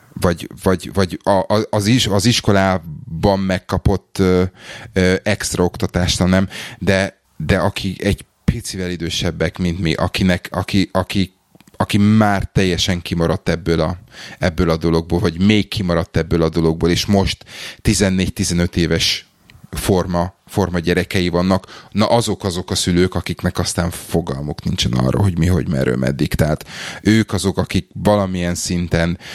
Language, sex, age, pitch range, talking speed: Hungarian, male, 30-49, 85-100 Hz, 145 wpm